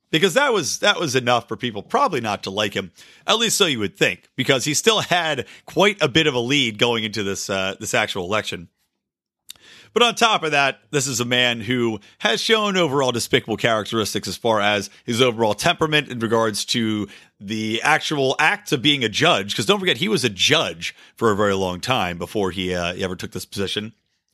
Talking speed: 215 wpm